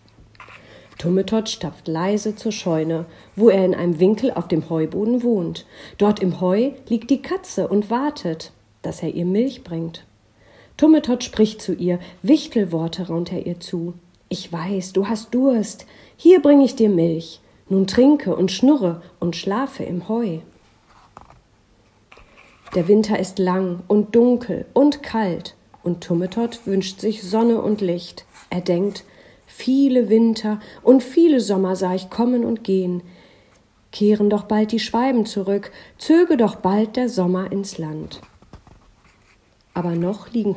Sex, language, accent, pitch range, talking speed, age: female, German, German, 170-225 Hz, 145 wpm, 40-59